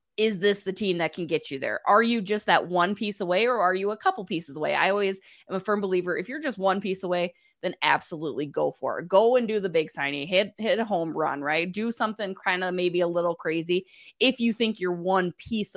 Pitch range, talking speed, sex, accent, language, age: 165-210 Hz, 250 wpm, female, American, English, 20-39